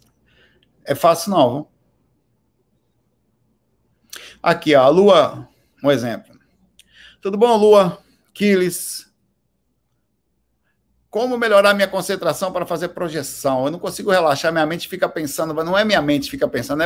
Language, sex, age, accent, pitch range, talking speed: Portuguese, male, 60-79, Brazilian, 135-195 Hz, 130 wpm